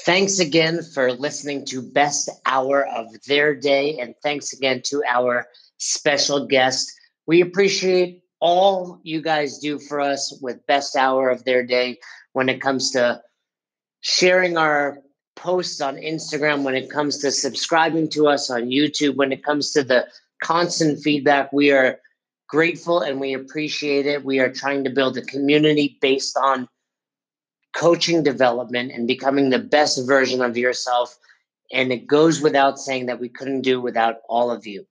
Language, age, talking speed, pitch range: English, 50-69, 160 wpm, 130-155 Hz